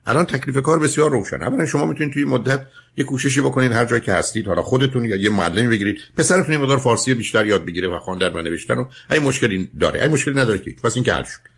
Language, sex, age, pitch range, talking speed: Persian, male, 60-79, 120-160 Hz, 240 wpm